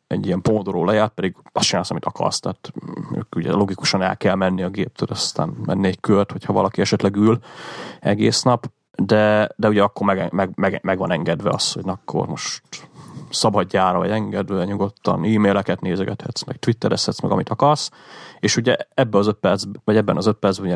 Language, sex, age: Hungarian, male, 30-49